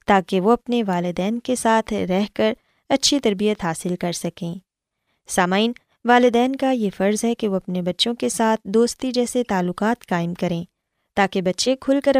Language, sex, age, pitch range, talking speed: Urdu, female, 20-39, 185-245 Hz, 165 wpm